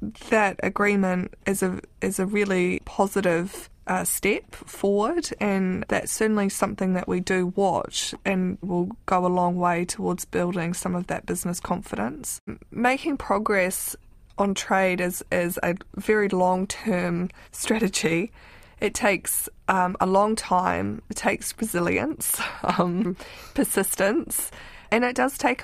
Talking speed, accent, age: 135 wpm, Australian, 20-39